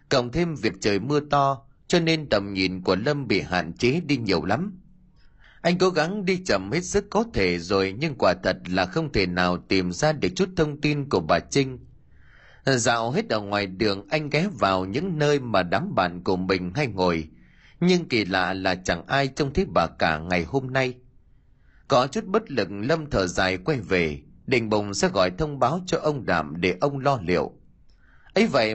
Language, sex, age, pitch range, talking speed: Vietnamese, male, 20-39, 95-155 Hz, 205 wpm